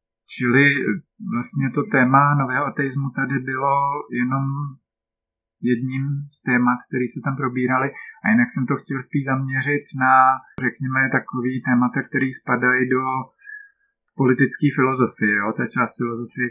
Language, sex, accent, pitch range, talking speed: Czech, male, native, 120-135 Hz, 130 wpm